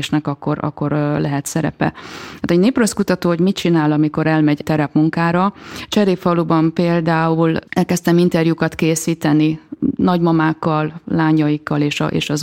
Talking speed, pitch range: 120 wpm, 150-175 Hz